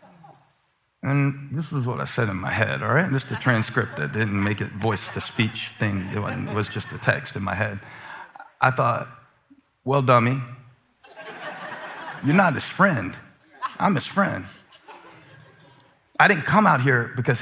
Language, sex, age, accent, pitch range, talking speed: English, male, 40-59, American, 115-150 Hz, 165 wpm